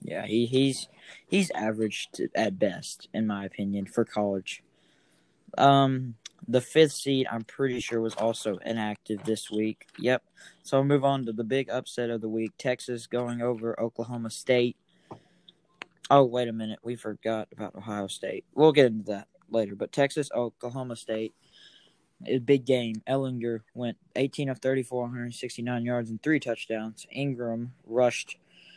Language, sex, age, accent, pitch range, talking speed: English, male, 10-29, American, 110-130 Hz, 155 wpm